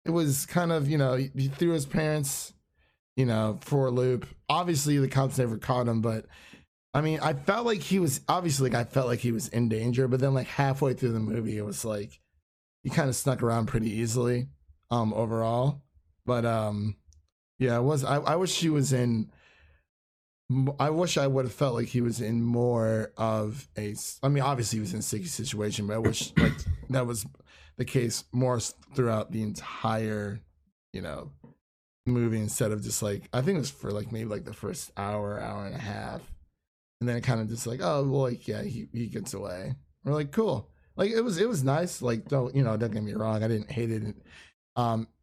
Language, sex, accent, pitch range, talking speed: English, male, American, 110-135 Hz, 215 wpm